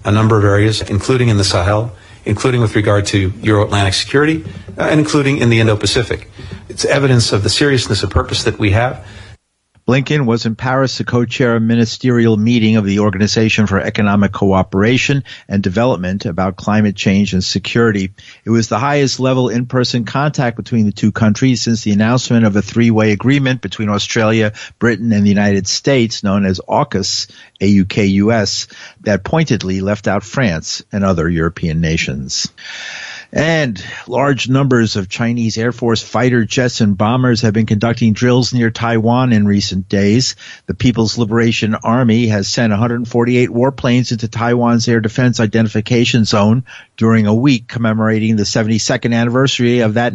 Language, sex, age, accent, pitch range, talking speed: English, male, 50-69, American, 105-125 Hz, 165 wpm